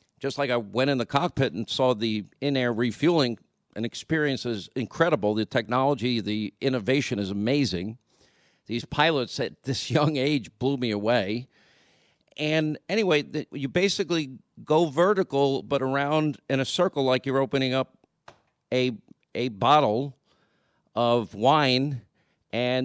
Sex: male